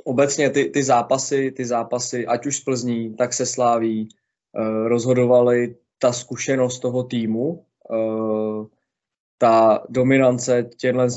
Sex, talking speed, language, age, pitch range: male, 125 wpm, Czech, 20-39, 115-125 Hz